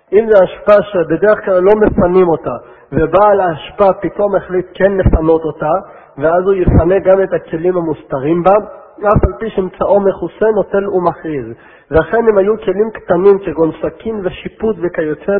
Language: Hebrew